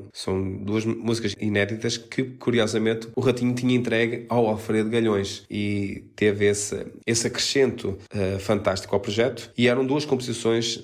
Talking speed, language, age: 145 wpm, Portuguese, 20-39